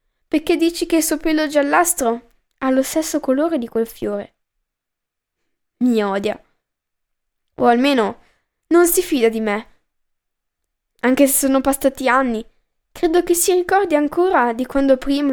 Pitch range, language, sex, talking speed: 235-295 Hz, Italian, female, 140 wpm